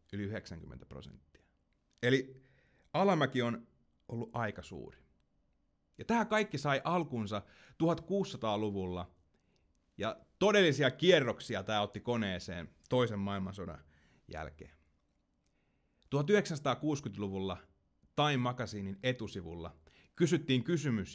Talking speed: 85 wpm